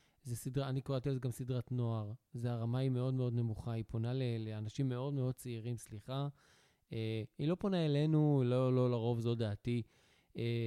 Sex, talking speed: male, 180 wpm